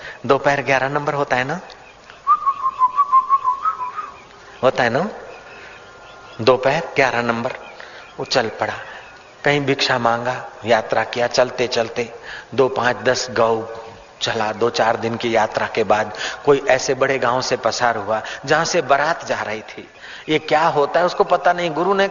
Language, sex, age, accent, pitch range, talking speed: Hindi, male, 40-59, native, 120-160 Hz, 150 wpm